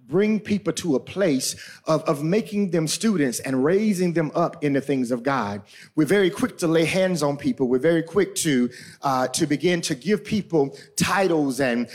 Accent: American